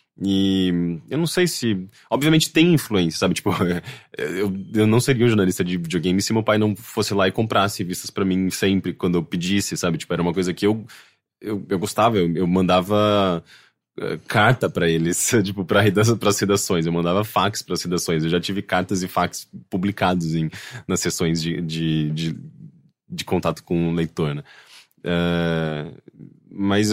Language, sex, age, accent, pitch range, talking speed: English, male, 20-39, Brazilian, 90-115 Hz, 175 wpm